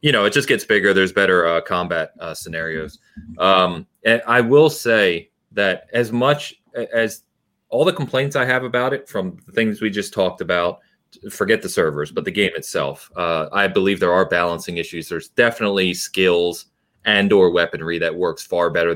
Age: 30-49